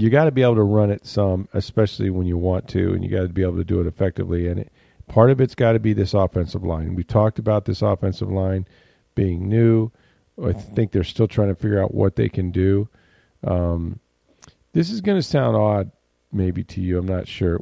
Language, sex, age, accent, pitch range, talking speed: English, male, 40-59, American, 90-110 Hz, 230 wpm